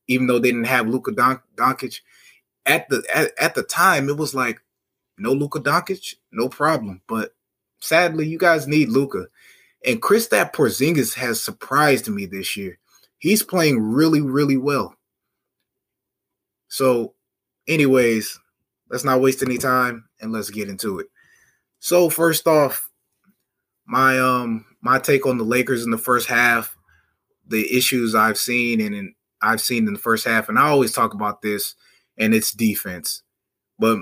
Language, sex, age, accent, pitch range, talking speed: English, male, 20-39, American, 115-145 Hz, 160 wpm